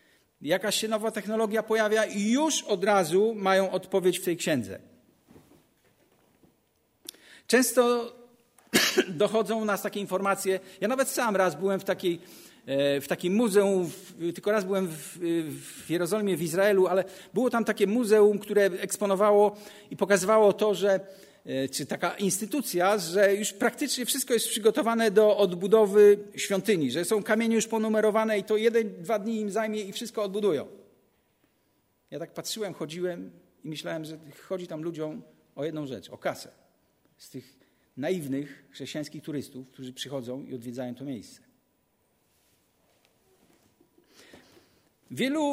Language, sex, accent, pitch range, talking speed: Polish, male, native, 180-220 Hz, 135 wpm